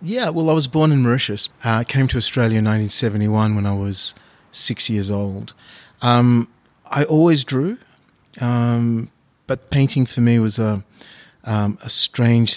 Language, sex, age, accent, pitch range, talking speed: English, male, 30-49, Australian, 105-130 Hz, 155 wpm